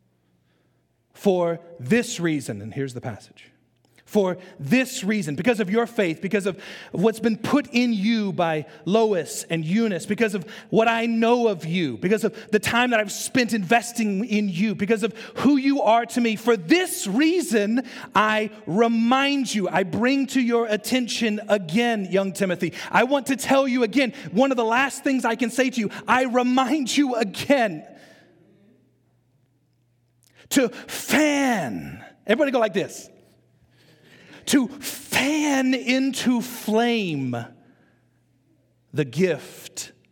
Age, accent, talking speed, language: 40-59, American, 140 wpm, English